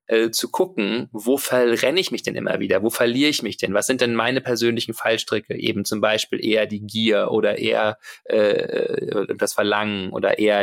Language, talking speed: German, 185 wpm